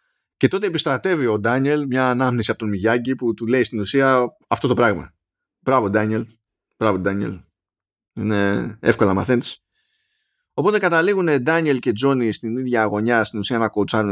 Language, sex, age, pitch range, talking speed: Greek, male, 20-39, 110-165 Hz, 160 wpm